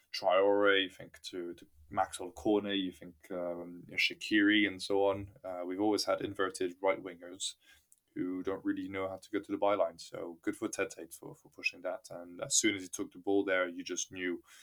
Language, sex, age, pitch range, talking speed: English, male, 20-39, 90-100 Hz, 210 wpm